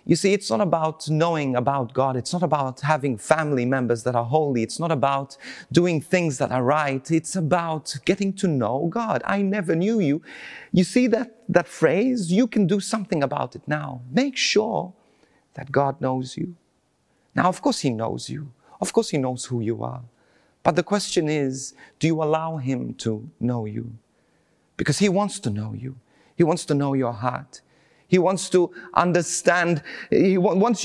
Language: English